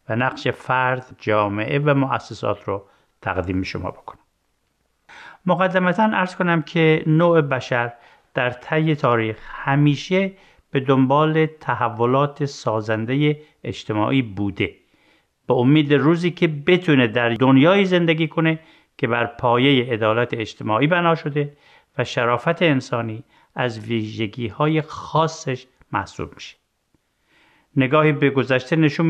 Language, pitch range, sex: Persian, 120-160 Hz, male